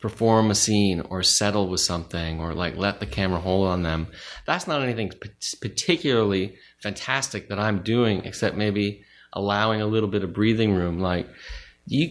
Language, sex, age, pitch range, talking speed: English, male, 30-49, 100-135 Hz, 170 wpm